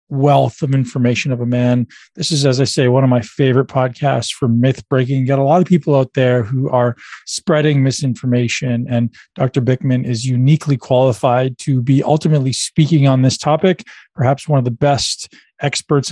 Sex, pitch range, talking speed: male, 130-150 Hz, 180 wpm